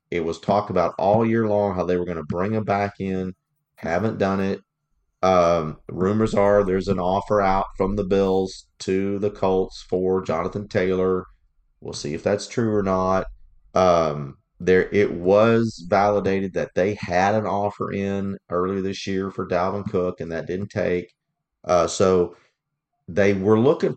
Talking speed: 170 wpm